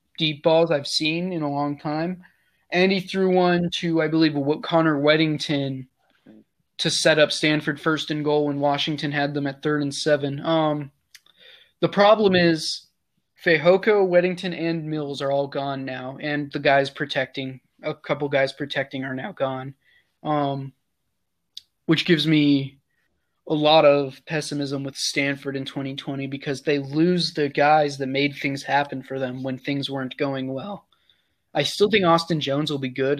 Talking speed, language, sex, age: 165 wpm, English, male, 20-39